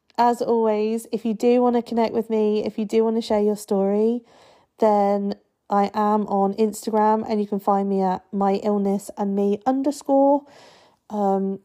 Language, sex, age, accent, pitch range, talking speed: English, female, 40-59, British, 185-220 Hz, 180 wpm